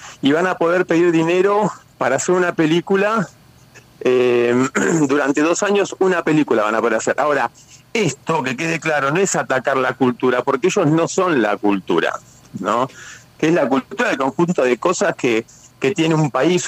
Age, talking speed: 40-59, 180 wpm